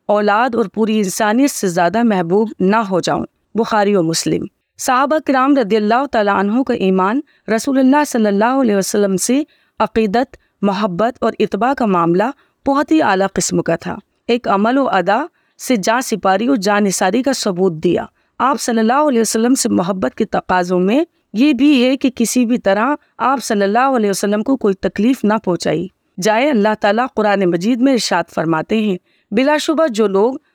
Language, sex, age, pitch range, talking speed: Urdu, female, 30-49, 200-255 Hz, 180 wpm